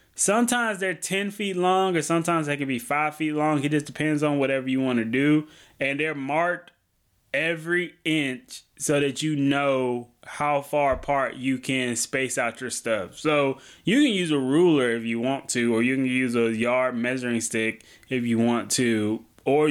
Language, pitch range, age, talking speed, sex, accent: English, 125-165 Hz, 20-39, 190 wpm, male, American